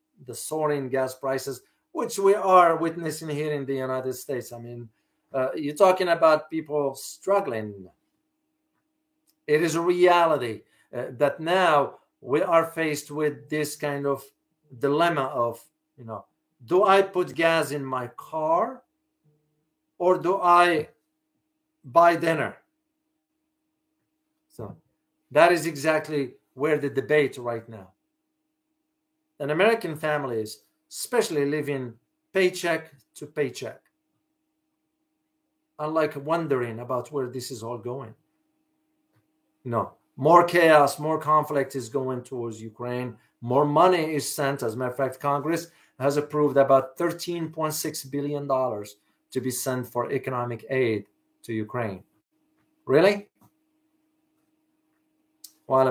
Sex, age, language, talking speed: male, 50-69, English, 120 wpm